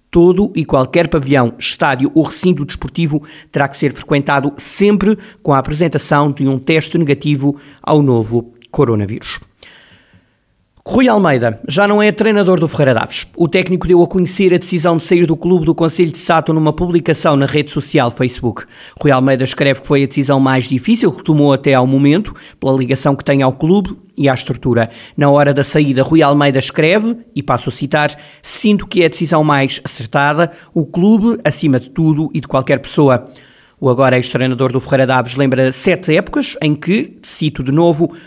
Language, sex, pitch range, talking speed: Portuguese, male, 135-170 Hz, 185 wpm